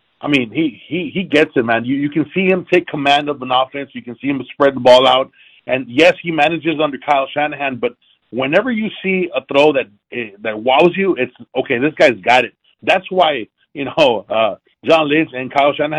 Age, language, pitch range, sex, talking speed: 40-59, English, 130-160 Hz, male, 220 wpm